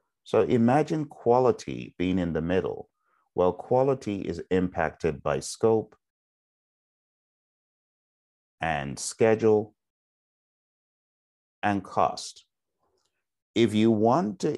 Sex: male